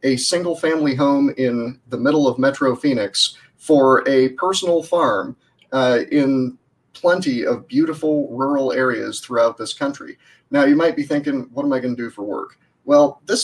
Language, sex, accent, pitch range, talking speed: English, male, American, 130-170 Hz, 175 wpm